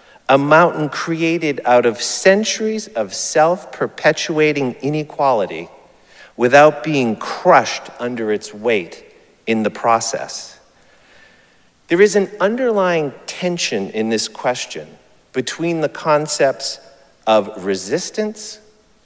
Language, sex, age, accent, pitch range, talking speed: English, male, 50-69, American, 125-190 Hz, 100 wpm